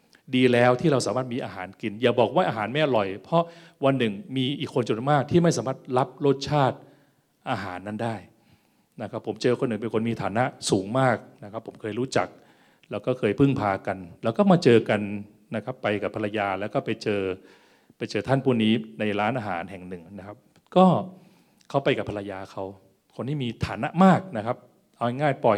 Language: Thai